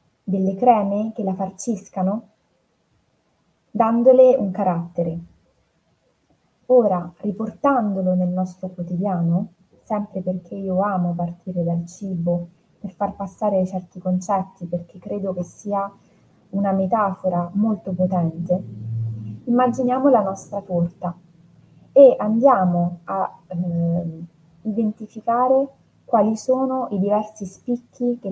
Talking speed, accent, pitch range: 100 wpm, native, 175-220 Hz